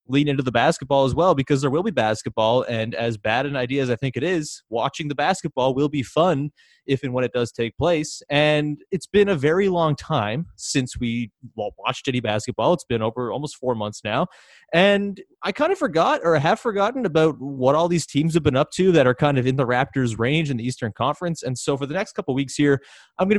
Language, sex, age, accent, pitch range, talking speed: English, male, 30-49, American, 120-170 Hz, 235 wpm